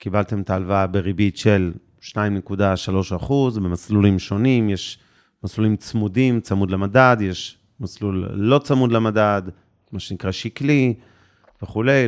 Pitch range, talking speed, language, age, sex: 100-125 Hz, 115 wpm, Hebrew, 30-49, male